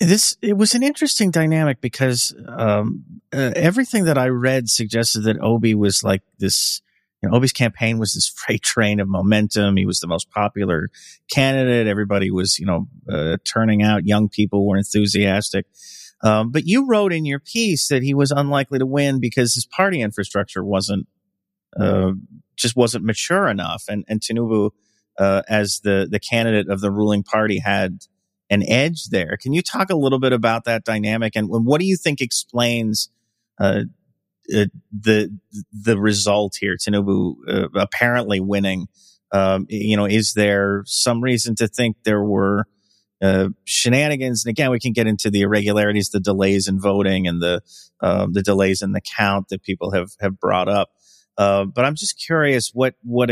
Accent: American